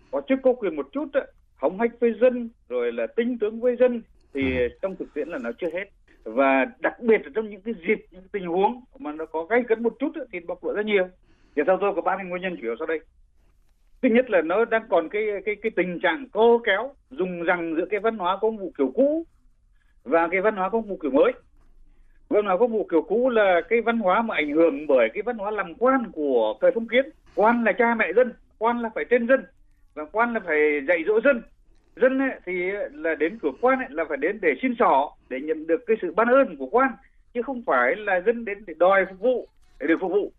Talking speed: 245 wpm